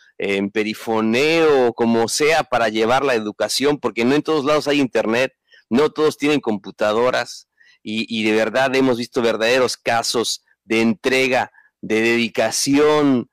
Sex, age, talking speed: male, 40-59, 140 wpm